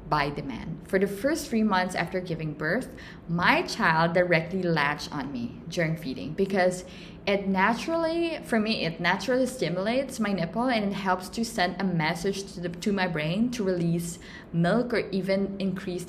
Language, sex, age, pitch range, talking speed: English, female, 20-39, 170-200 Hz, 170 wpm